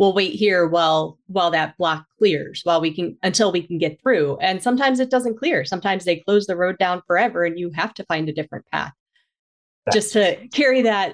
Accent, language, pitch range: American, English, 170-225 Hz